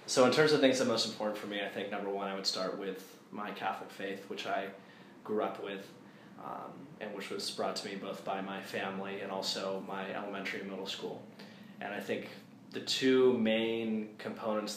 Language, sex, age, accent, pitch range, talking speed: English, male, 20-39, American, 95-110 Hz, 210 wpm